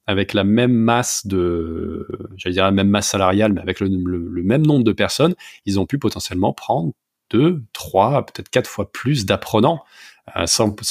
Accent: French